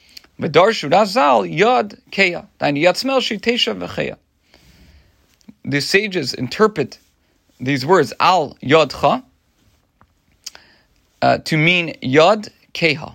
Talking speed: 45 wpm